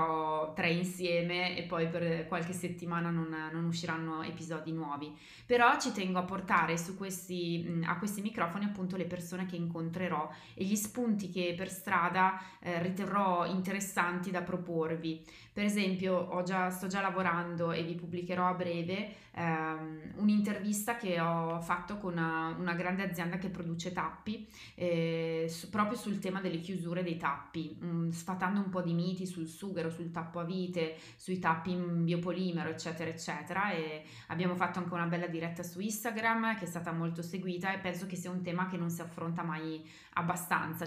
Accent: native